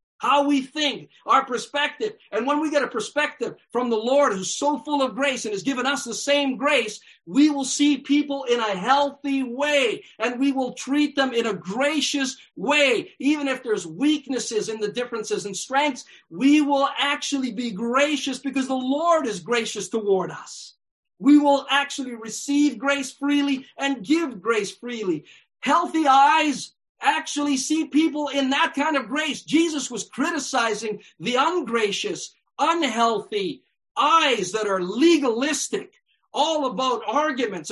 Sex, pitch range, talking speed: male, 235-295 Hz, 155 wpm